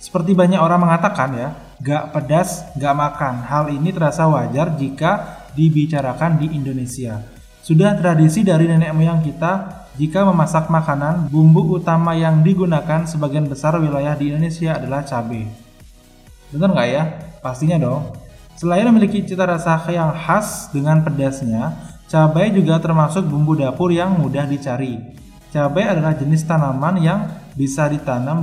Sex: male